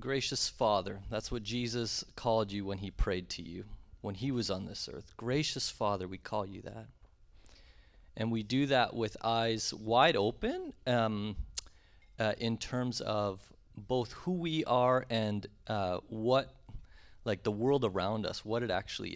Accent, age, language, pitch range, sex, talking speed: American, 30-49, English, 95-125 Hz, male, 165 wpm